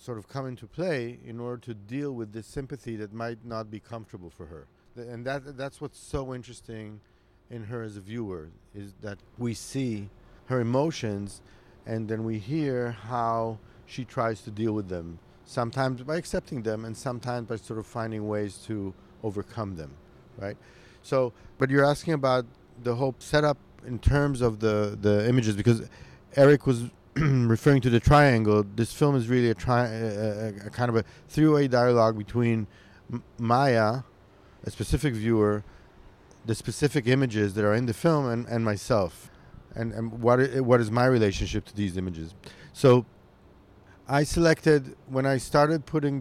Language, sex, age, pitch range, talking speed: English, male, 50-69, 110-135 Hz, 170 wpm